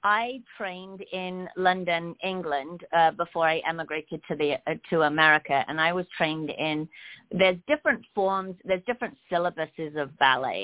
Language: English